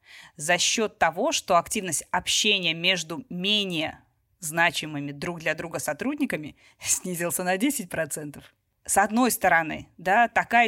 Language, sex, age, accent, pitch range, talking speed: Russian, female, 20-39, native, 170-215 Hz, 120 wpm